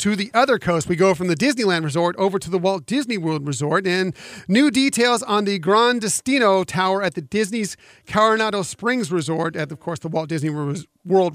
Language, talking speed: English, 200 wpm